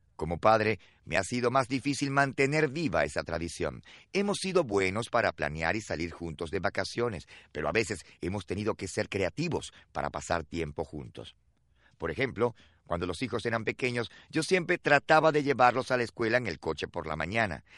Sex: male